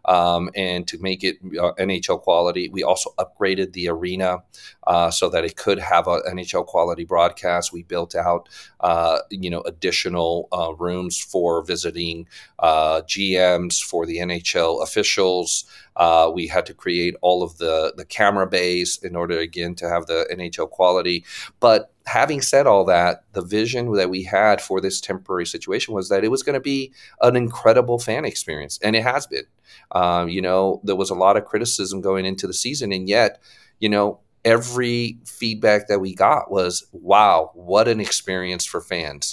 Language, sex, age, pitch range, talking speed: English, male, 40-59, 85-105 Hz, 180 wpm